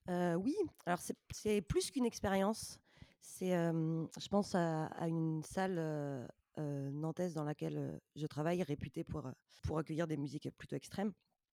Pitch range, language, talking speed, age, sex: 155-185 Hz, French, 155 wpm, 20-39, female